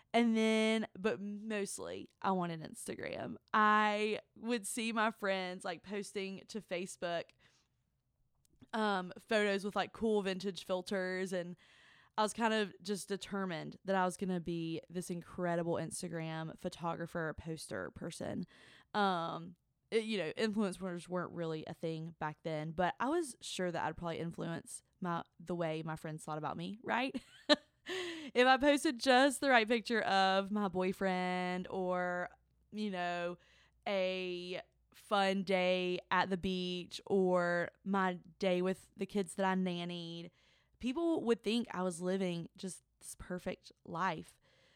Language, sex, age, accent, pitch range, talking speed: English, female, 20-39, American, 170-210 Hz, 145 wpm